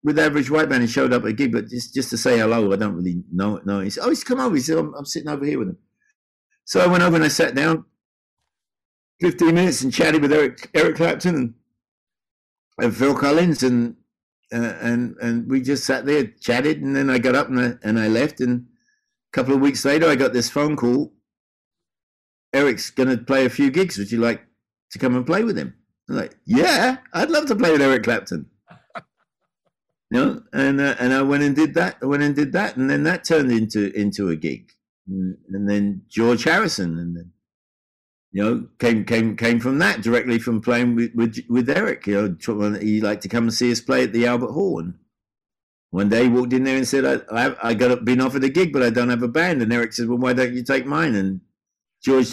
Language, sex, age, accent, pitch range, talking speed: English, male, 60-79, British, 115-150 Hz, 235 wpm